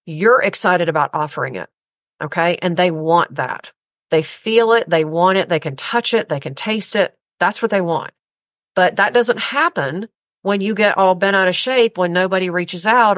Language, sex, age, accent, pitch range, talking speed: English, female, 40-59, American, 170-225 Hz, 200 wpm